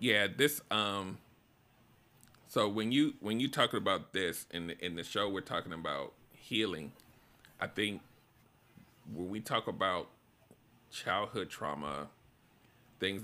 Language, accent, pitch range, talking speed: English, American, 100-120 Hz, 130 wpm